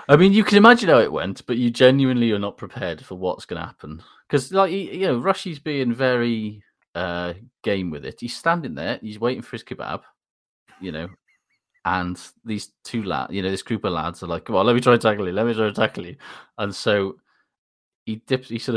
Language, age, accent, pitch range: English, 30-49, British, 90-125 Hz